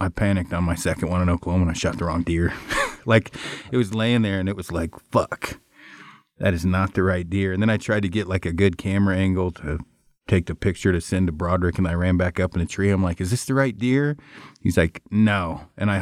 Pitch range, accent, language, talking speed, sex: 90-110 Hz, American, English, 260 wpm, male